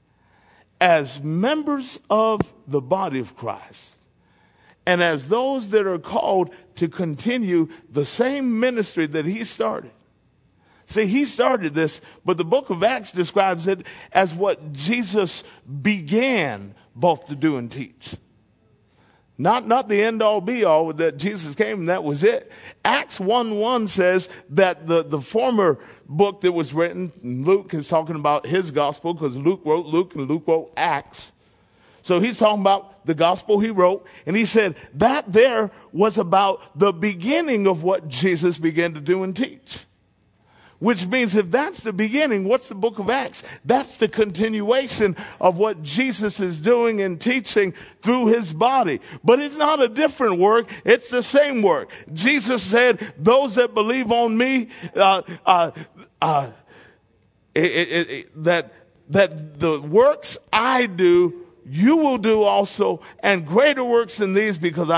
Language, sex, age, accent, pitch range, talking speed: English, male, 50-69, American, 165-230 Hz, 155 wpm